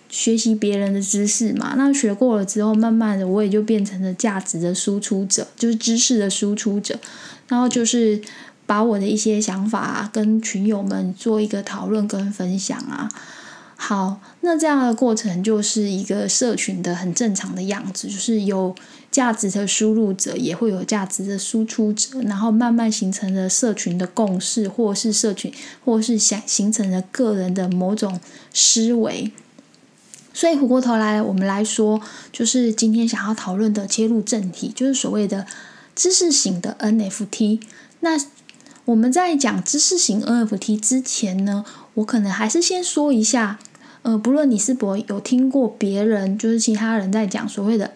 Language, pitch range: Chinese, 205-240 Hz